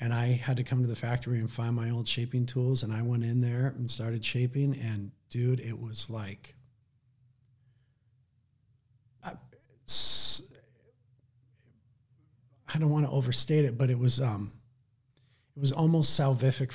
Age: 40-59